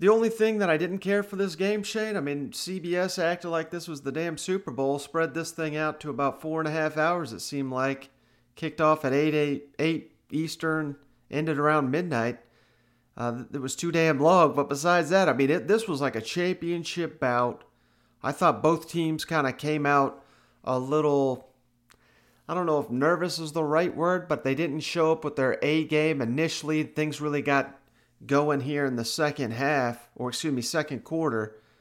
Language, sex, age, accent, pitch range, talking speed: English, male, 40-59, American, 140-170 Hz, 200 wpm